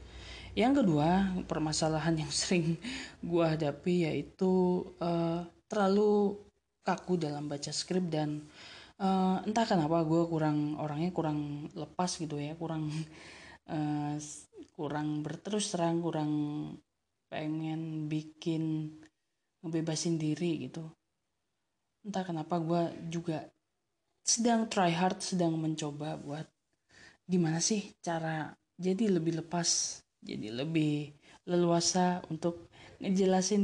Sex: female